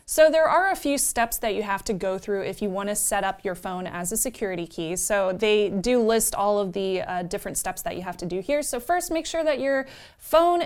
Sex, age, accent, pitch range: female, 20-39, American, 185-240 Hz